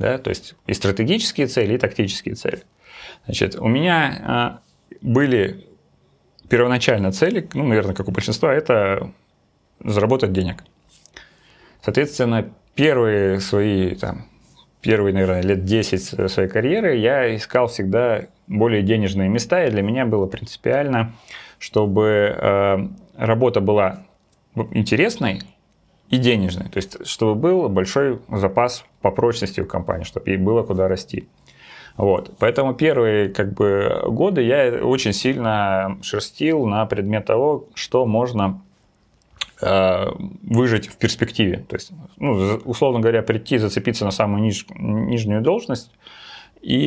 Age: 30-49